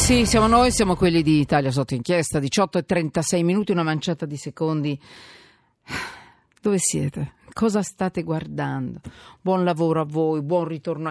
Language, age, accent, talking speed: Italian, 40-59, native, 150 wpm